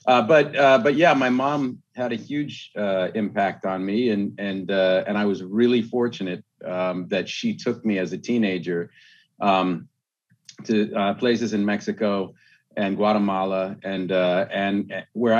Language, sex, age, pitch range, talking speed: English, male, 40-59, 90-110 Hz, 165 wpm